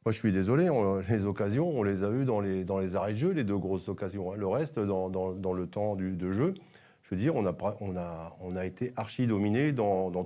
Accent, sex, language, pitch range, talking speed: French, male, French, 95-115 Hz, 270 wpm